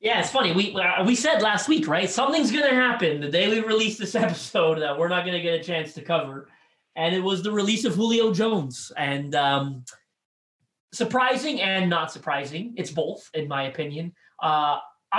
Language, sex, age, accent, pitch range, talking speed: English, male, 30-49, American, 160-215 Hz, 195 wpm